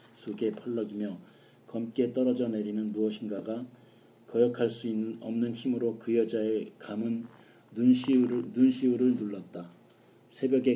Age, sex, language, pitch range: 40-59, male, Korean, 110-125 Hz